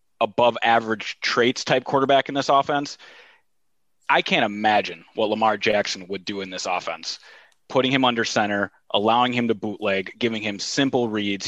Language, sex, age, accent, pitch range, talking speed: English, male, 20-39, American, 105-120 Hz, 160 wpm